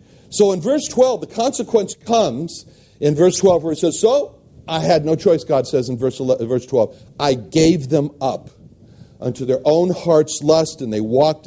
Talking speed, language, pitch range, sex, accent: 185 wpm, English, 135-185 Hz, male, American